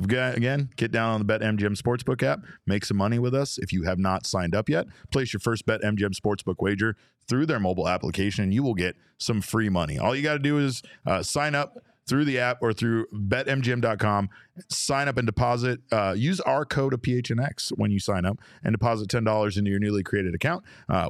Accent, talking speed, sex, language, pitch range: American, 215 wpm, male, English, 95-120 Hz